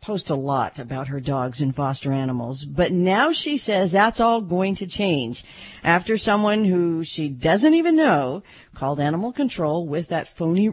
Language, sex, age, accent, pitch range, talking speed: English, female, 50-69, American, 140-195 Hz, 175 wpm